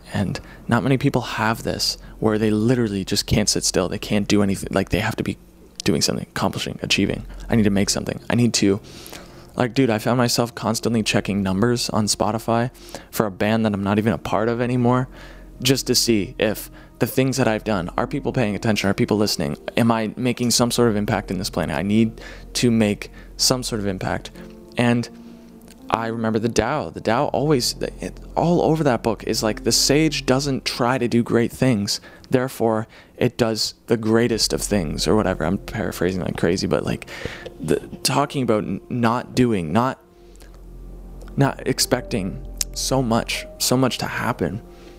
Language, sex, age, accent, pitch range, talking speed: English, male, 20-39, American, 105-125 Hz, 190 wpm